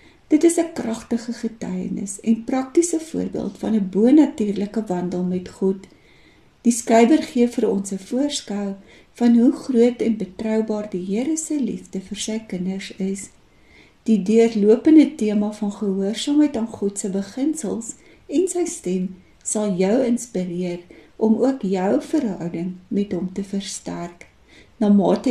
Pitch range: 195-255 Hz